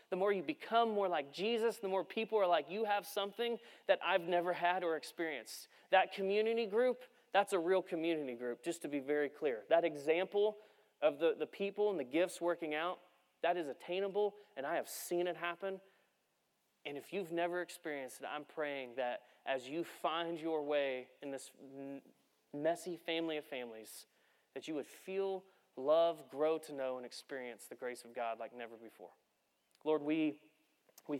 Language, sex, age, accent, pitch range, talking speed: English, male, 30-49, American, 145-190 Hz, 180 wpm